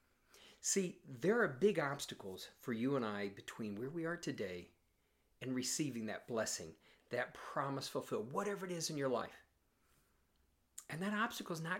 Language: English